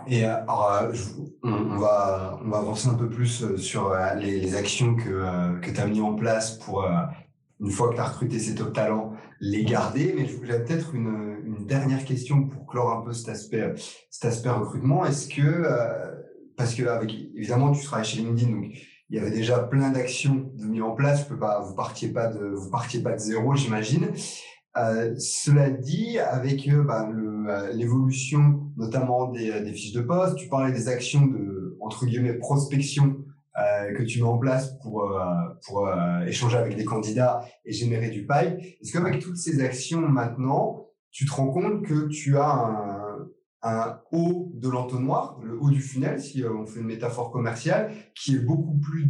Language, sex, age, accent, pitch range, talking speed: French, male, 30-49, French, 110-140 Hz, 190 wpm